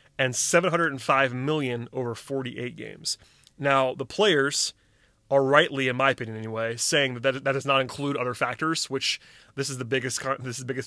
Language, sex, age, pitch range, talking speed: English, male, 30-49, 125-145 Hz, 180 wpm